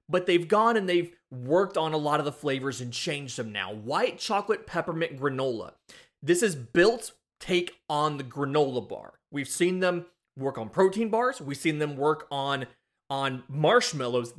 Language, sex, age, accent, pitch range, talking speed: English, male, 30-49, American, 135-180 Hz, 175 wpm